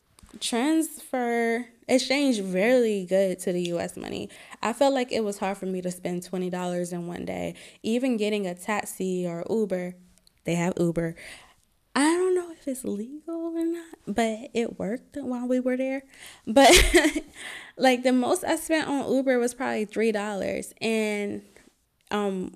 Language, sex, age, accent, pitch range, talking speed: English, female, 20-39, American, 185-240 Hz, 160 wpm